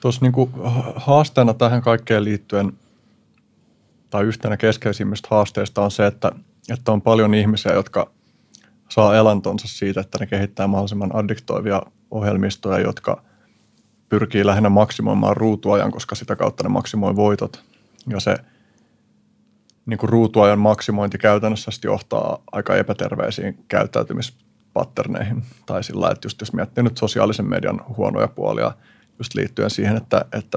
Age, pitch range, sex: 30-49, 100-110 Hz, male